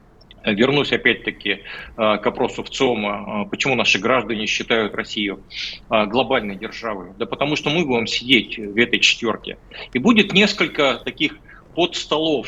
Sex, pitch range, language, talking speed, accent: male, 110-135 Hz, Russian, 130 wpm, native